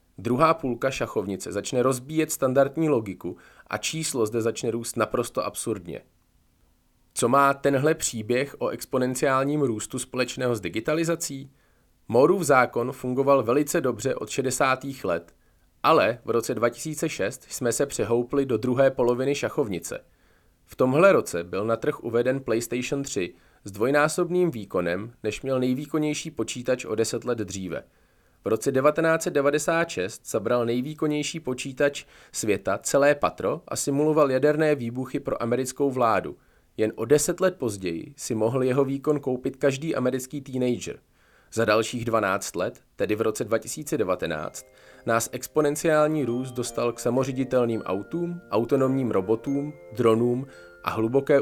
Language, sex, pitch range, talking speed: Czech, male, 115-145 Hz, 130 wpm